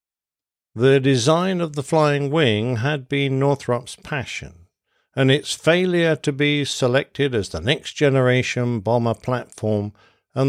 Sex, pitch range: male, 110-145 Hz